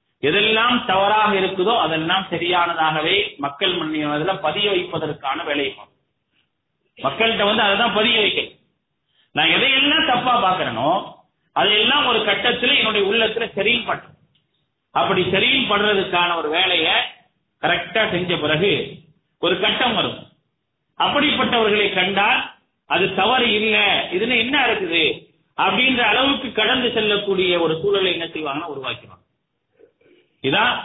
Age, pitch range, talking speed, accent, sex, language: 40-59, 175-235 Hz, 110 wpm, Indian, male, English